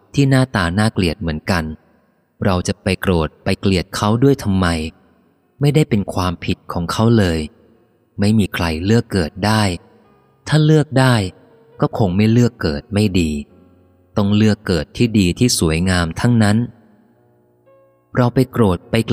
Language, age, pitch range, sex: Thai, 20-39, 85-115 Hz, male